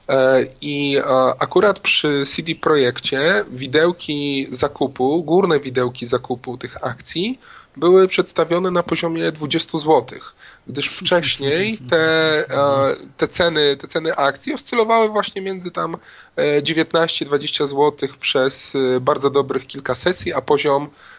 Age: 20-39